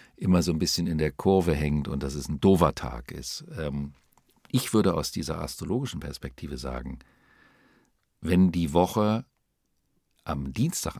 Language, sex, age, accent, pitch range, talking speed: German, male, 50-69, German, 70-90 Hz, 145 wpm